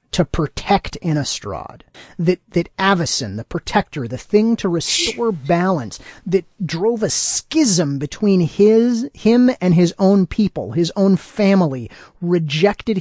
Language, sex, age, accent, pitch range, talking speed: English, male, 30-49, American, 165-205 Hz, 130 wpm